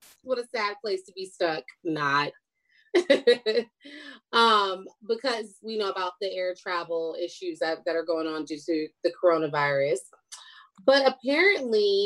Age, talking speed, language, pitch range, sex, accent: 30-49, 140 wpm, English, 185-275 Hz, female, American